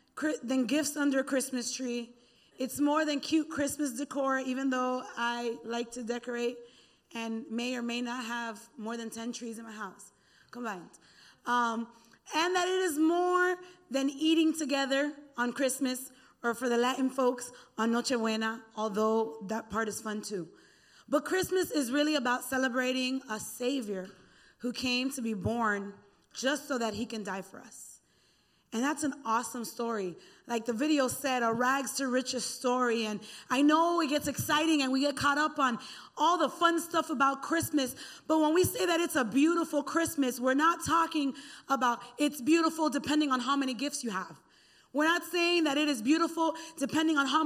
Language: English